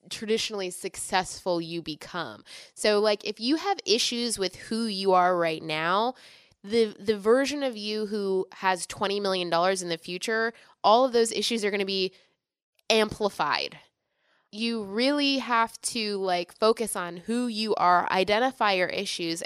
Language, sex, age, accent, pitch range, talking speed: English, female, 20-39, American, 185-235 Hz, 155 wpm